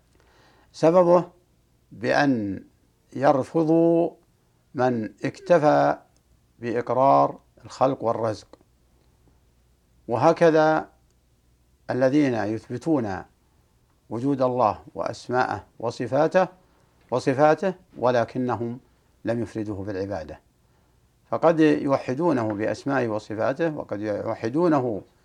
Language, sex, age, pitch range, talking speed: Arabic, male, 60-79, 100-135 Hz, 60 wpm